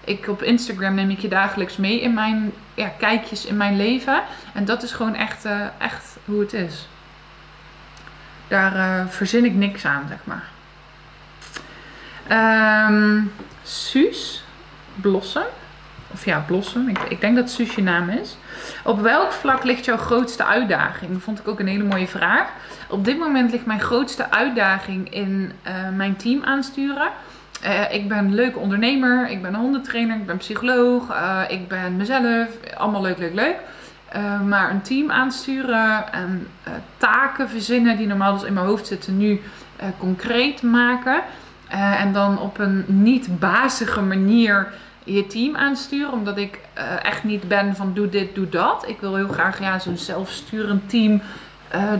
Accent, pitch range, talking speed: Dutch, 195-235 Hz, 165 wpm